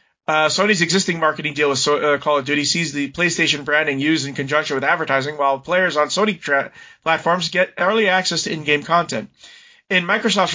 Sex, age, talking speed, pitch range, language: male, 30-49, 195 wpm, 150-195 Hz, English